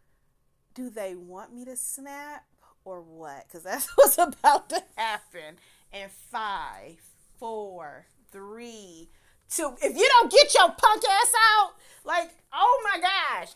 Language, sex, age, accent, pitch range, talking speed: English, female, 30-49, American, 195-295 Hz, 135 wpm